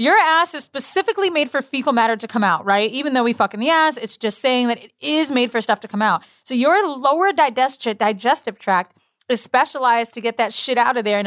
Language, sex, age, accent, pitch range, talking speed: English, female, 30-49, American, 220-285 Hz, 250 wpm